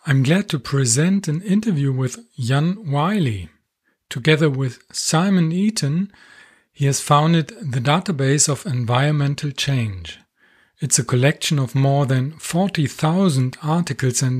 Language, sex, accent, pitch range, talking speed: English, male, German, 125-160 Hz, 125 wpm